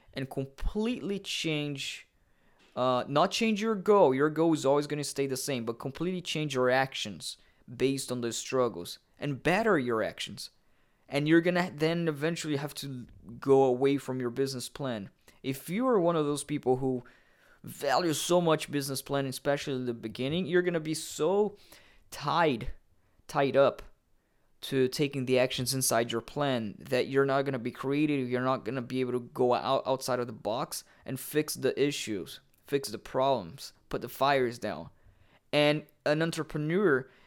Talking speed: 175 wpm